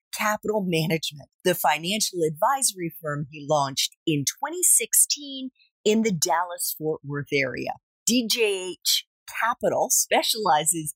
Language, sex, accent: English, female, American